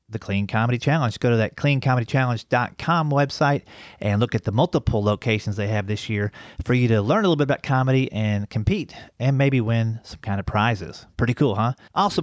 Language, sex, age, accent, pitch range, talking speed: English, male, 40-59, American, 110-140 Hz, 200 wpm